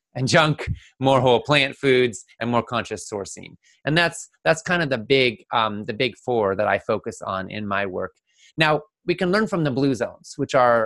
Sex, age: male, 30-49